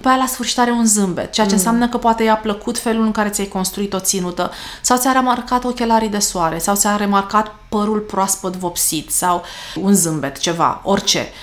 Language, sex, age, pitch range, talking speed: Romanian, female, 30-49, 195-245 Hz, 200 wpm